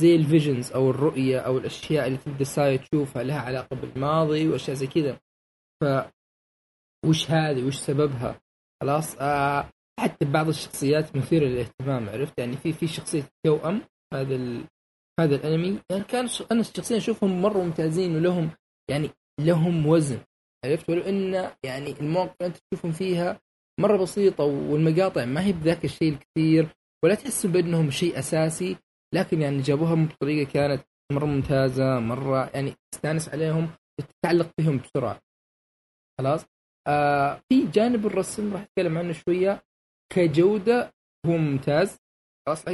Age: 20-39